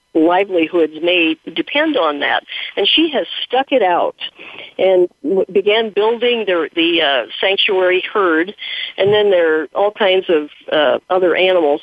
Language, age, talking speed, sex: English, 50-69, 145 wpm, female